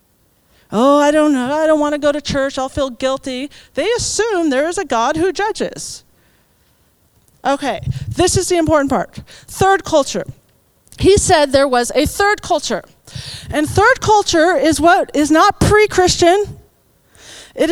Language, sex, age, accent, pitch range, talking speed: English, female, 40-59, American, 265-365 Hz, 155 wpm